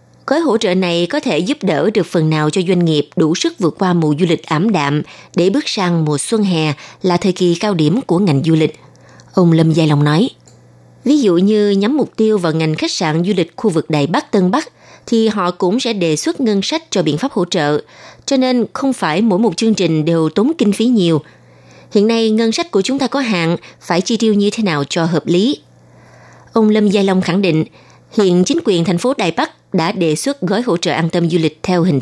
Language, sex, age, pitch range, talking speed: Vietnamese, female, 20-39, 160-220 Hz, 245 wpm